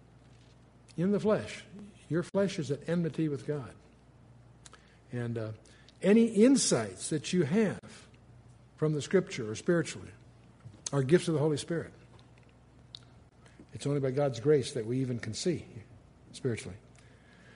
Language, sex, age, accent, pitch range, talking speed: English, male, 60-79, American, 140-215 Hz, 135 wpm